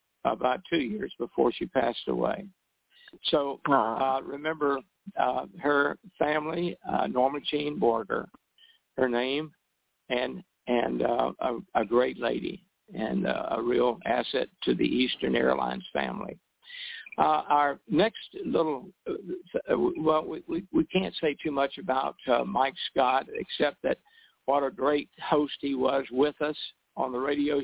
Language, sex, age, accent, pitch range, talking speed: English, male, 60-79, American, 135-165 Hz, 140 wpm